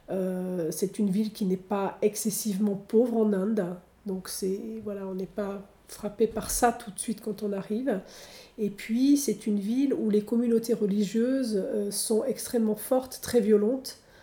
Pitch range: 200-240 Hz